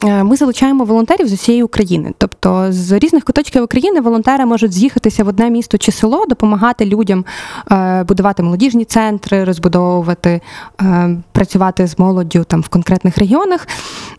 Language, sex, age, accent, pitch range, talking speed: Ukrainian, female, 20-39, native, 195-250 Hz, 135 wpm